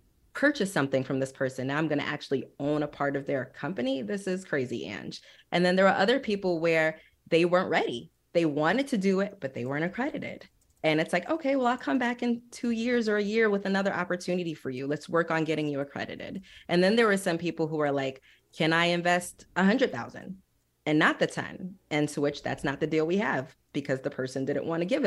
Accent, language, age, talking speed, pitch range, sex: American, English, 30-49, 235 wpm, 140-185 Hz, female